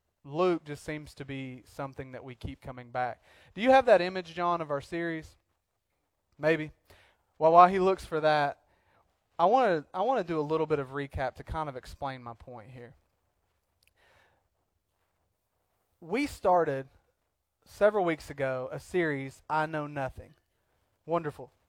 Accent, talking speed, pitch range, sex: American, 155 wpm, 135-185 Hz, male